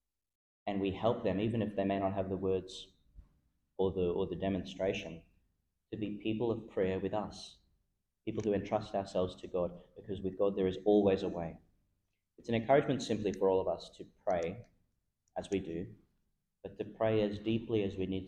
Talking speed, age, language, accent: 195 wpm, 30-49, English, Australian